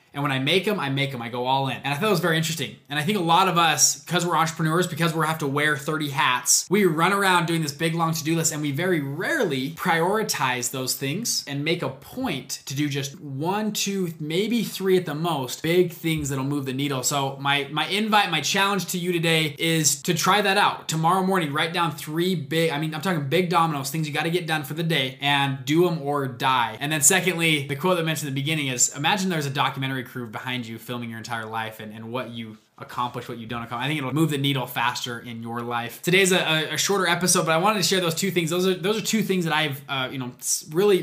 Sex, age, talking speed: male, 20-39, 260 wpm